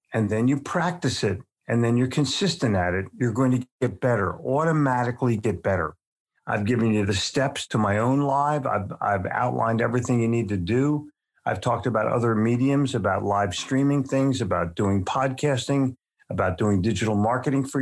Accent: American